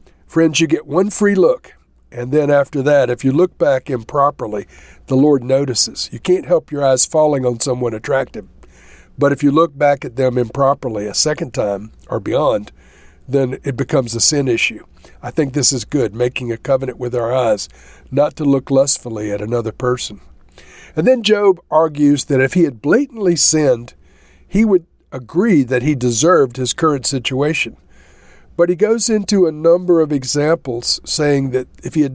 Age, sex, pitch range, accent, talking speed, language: 50-69, male, 125-160 Hz, American, 180 wpm, English